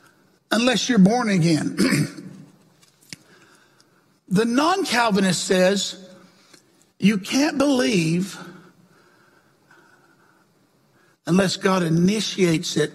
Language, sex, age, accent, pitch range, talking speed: English, male, 60-79, American, 185-305 Hz, 65 wpm